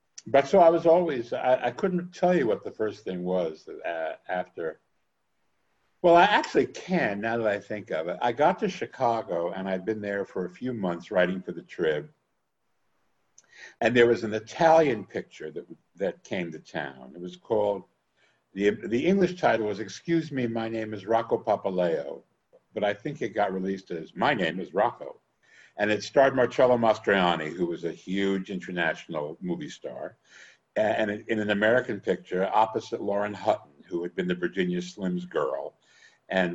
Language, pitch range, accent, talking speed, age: English, 95-130 Hz, American, 180 wpm, 60-79